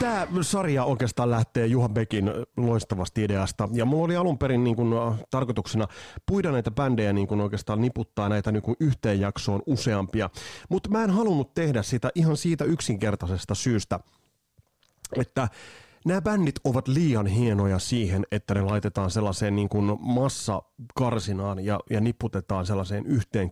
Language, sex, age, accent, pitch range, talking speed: Finnish, male, 30-49, native, 105-145 Hz, 140 wpm